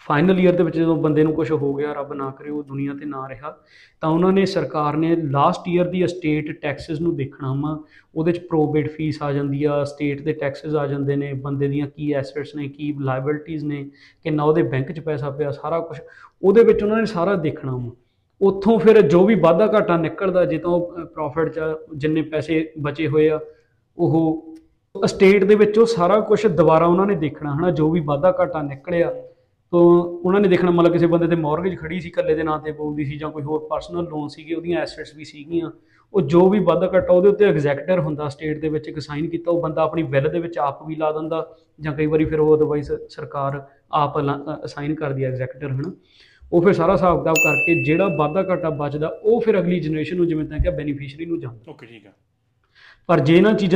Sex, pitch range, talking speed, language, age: male, 150-175 Hz, 185 wpm, Punjabi, 20-39